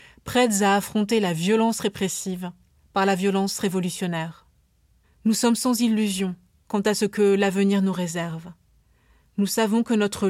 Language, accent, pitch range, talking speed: French, French, 190-225 Hz, 145 wpm